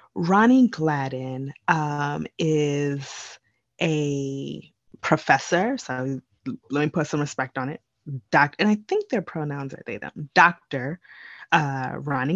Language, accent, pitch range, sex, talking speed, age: English, American, 140-180 Hz, female, 120 wpm, 20-39